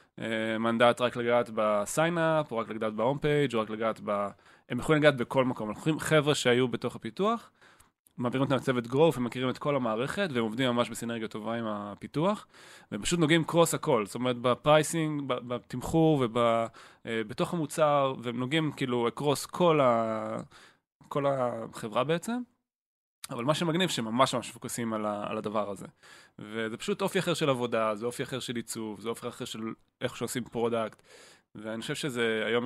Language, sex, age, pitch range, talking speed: Hebrew, male, 20-39, 110-145 Hz, 160 wpm